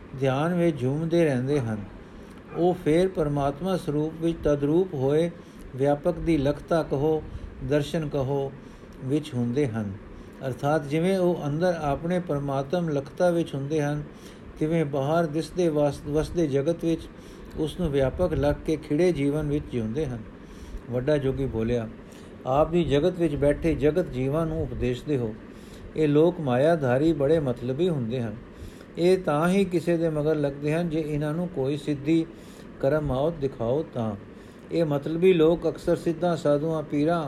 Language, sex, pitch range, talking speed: Punjabi, male, 140-165 Hz, 145 wpm